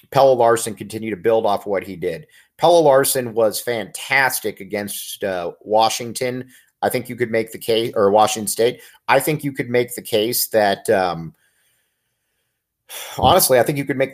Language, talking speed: English, 175 wpm